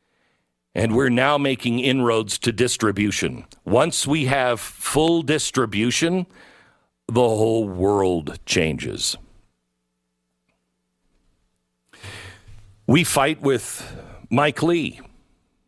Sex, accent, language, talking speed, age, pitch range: male, American, English, 80 wpm, 50-69, 110-160 Hz